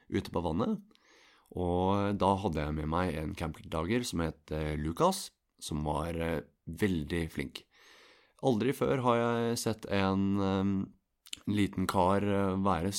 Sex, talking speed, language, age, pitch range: male, 130 wpm, English, 30-49, 80-105 Hz